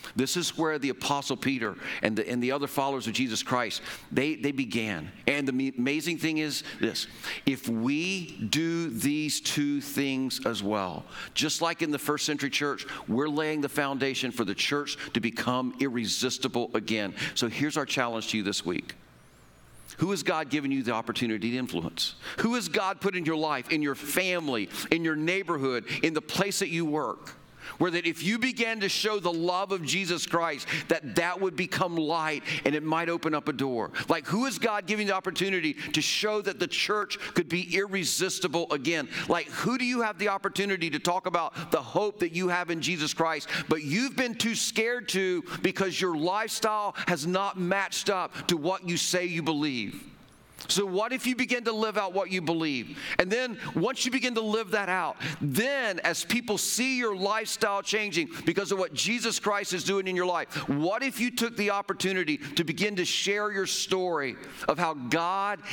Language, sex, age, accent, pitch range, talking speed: English, male, 50-69, American, 145-195 Hz, 195 wpm